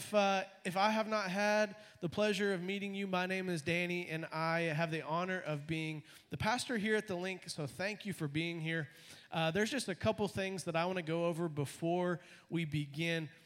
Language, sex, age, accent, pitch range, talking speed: English, male, 30-49, American, 165-220 Hz, 225 wpm